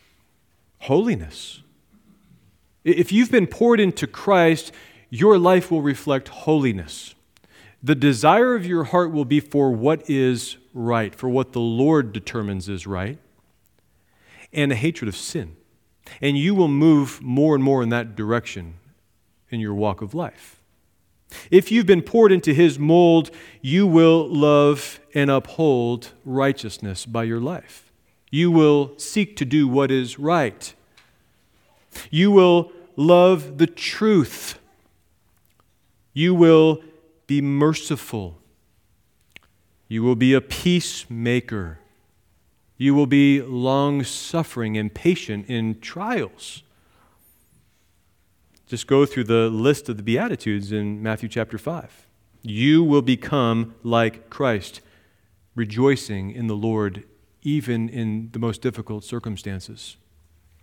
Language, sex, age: English, male, 40-59